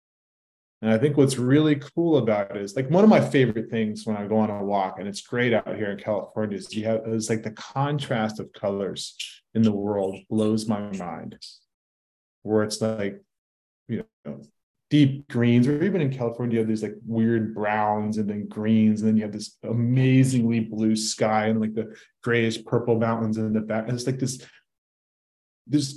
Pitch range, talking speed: 105-125 Hz, 195 wpm